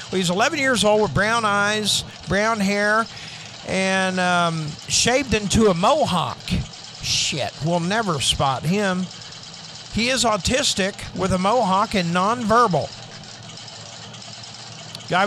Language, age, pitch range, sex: English, 50-69, 145-195 Hz, male